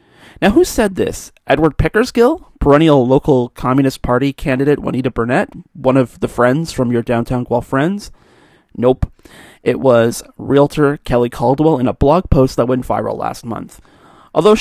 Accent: American